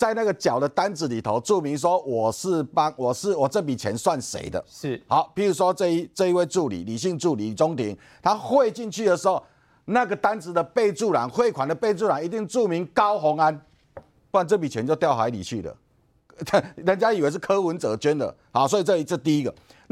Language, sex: Chinese, male